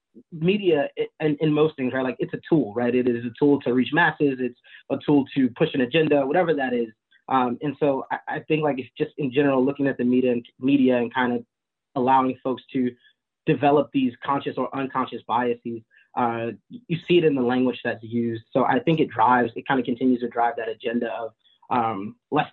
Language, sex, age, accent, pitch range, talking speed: English, male, 20-39, American, 120-145 Hz, 220 wpm